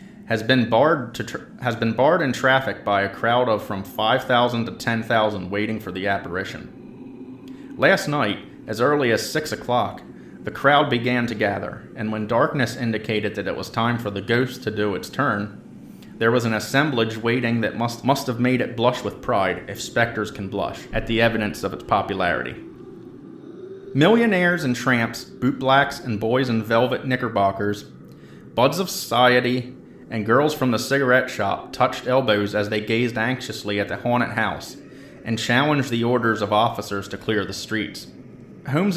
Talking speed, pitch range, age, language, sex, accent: 175 wpm, 105-130 Hz, 30-49, English, male, American